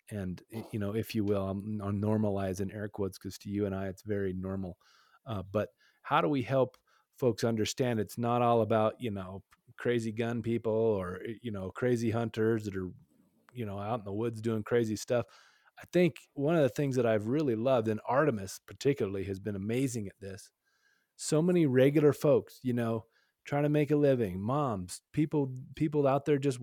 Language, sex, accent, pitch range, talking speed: English, male, American, 110-150 Hz, 195 wpm